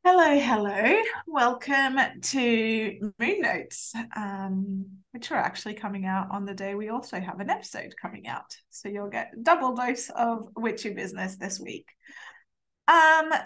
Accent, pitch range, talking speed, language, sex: British, 200-285 Hz, 145 wpm, English, female